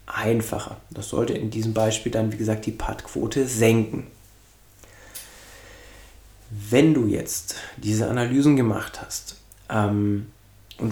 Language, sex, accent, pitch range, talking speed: German, male, German, 105-130 Hz, 115 wpm